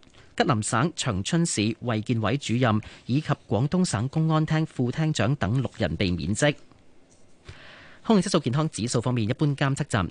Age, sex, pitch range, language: 30-49, male, 105-145 Hz, Chinese